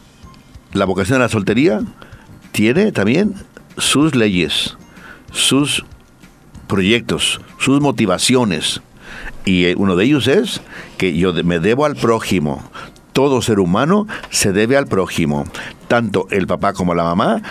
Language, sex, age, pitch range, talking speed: Spanish, male, 60-79, 95-120 Hz, 125 wpm